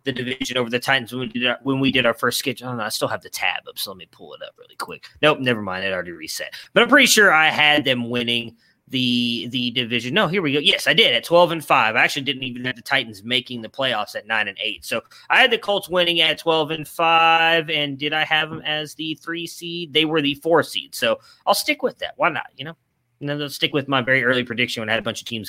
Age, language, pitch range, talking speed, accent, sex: 30-49, English, 130-165 Hz, 290 wpm, American, male